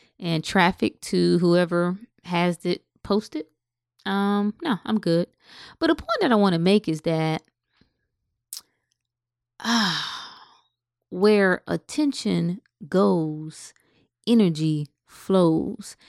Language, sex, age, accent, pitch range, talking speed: English, female, 20-39, American, 160-230 Hz, 100 wpm